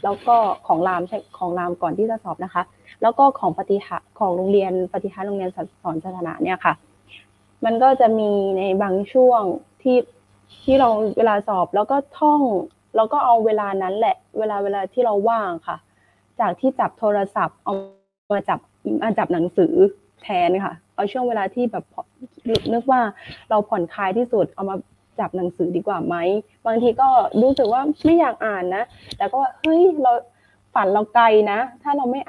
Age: 20-39